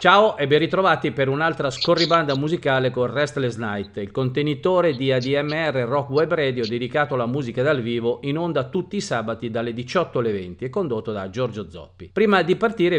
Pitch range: 120-165 Hz